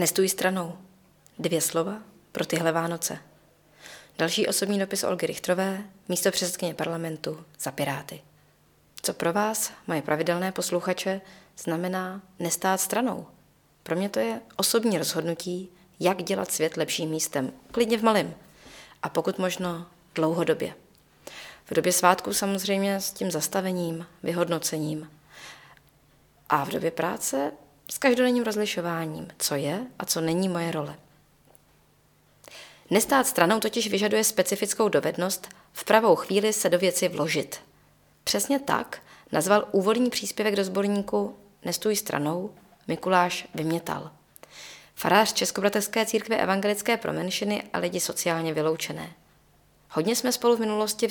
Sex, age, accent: female, 20-39, native